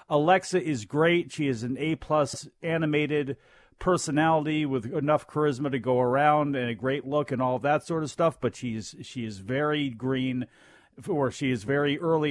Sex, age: male, 40-59